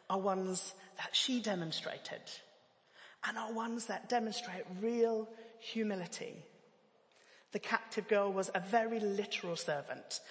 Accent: British